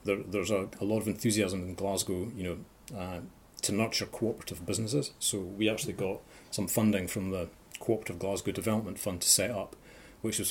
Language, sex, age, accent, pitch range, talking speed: English, male, 30-49, British, 90-110 Hz, 190 wpm